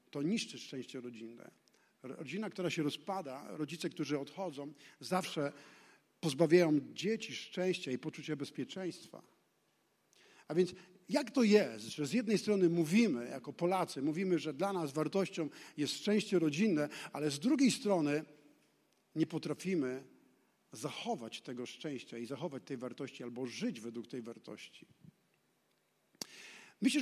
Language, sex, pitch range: Polish, male, 140-195 Hz